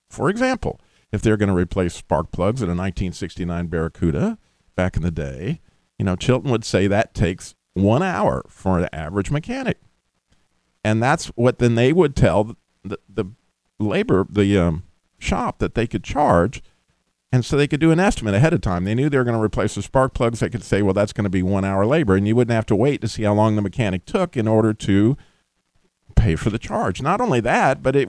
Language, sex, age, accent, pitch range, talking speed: English, male, 50-69, American, 90-125 Hz, 220 wpm